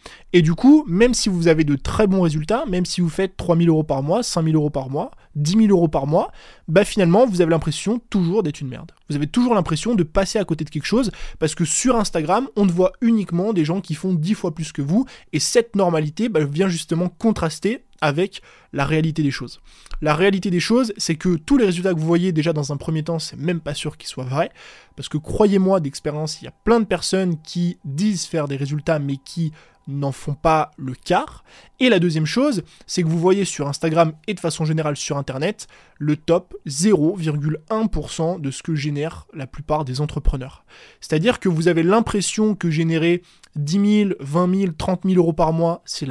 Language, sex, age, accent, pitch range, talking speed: French, male, 20-39, French, 155-195 Hz, 220 wpm